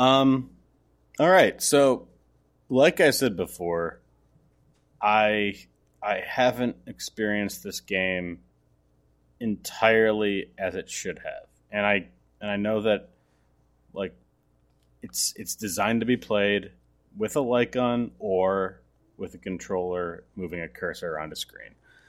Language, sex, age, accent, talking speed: English, male, 30-49, American, 125 wpm